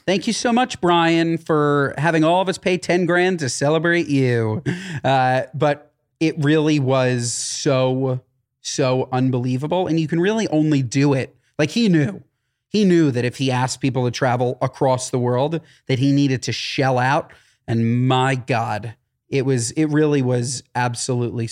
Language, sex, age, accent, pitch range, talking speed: English, male, 30-49, American, 130-215 Hz, 170 wpm